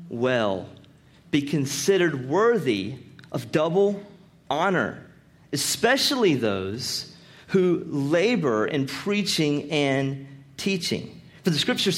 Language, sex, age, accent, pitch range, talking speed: English, male, 40-59, American, 145-200 Hz, 90 wpm